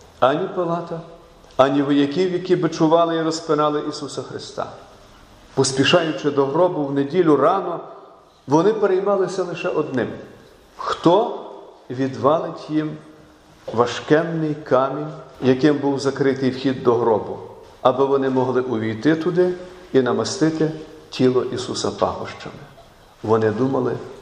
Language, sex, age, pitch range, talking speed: Ukrainian, male, 50-69, 130-180 Hz, 105 wpm